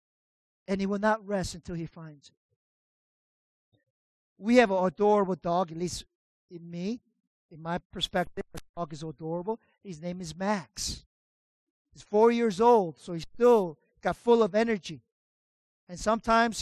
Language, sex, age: English, male, 50-69